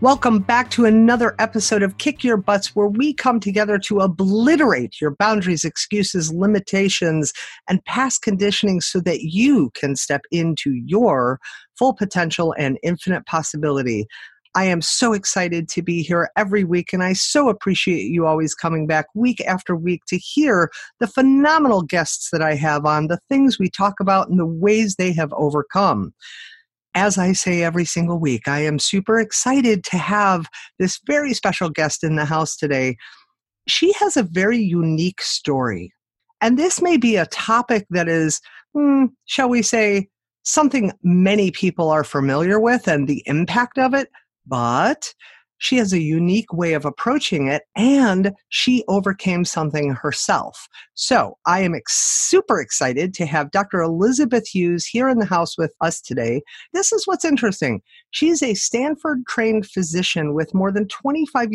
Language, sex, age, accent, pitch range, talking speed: English, female, 50-69, American, 165-235 Hz, 160 wpm